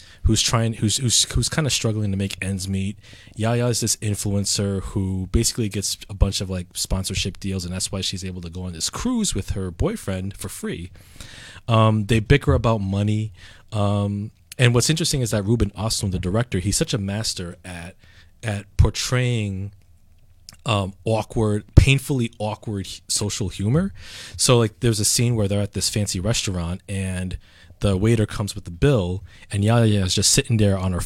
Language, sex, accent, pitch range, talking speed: English, male, American, 95-115 Hz, 180 wpm